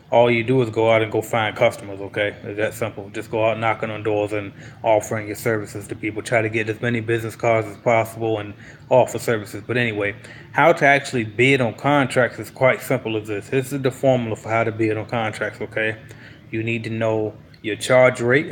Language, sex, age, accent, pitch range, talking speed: English, male, 20-39, American, 110-125 Hz, 225 wpm